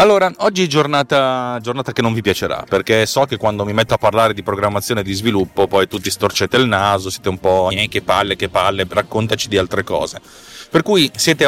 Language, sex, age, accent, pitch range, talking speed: Italian, male, 30-49, native, 95-120 Hz, 215 wpm